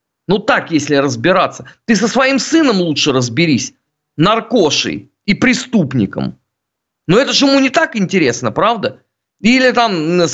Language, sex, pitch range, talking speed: Russian, male, 140-215 Hz, 145 wpm